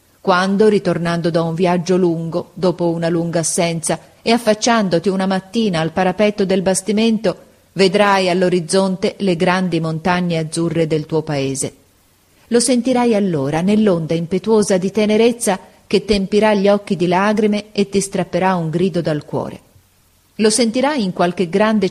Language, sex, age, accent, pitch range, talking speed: Italian, female, 40-59, native, 165-205 Hz, 140 wpm